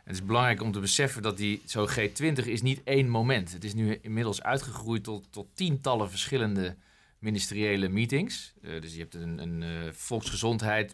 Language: Dutch